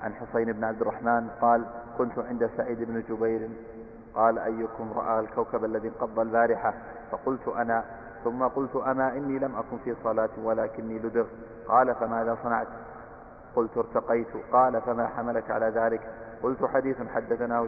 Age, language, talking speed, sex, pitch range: 40-59, Arabic, 145 wpm, male, 115-120 Hz